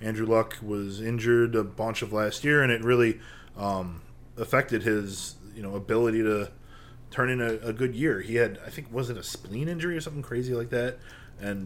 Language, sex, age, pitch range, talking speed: English, male, 20-39, 105-130 Hz, 205 wpm